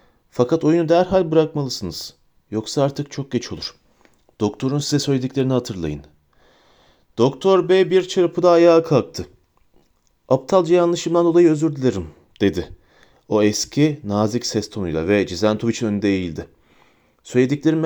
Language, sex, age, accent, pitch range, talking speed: Turkish, male, 40-59, native, 105-150 Hz, 120 wpm